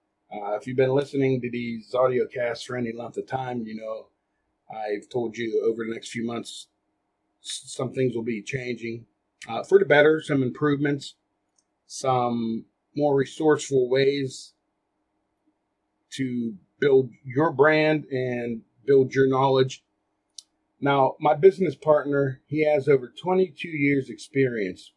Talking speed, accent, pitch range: 135 wpm, American, 115-150 Hz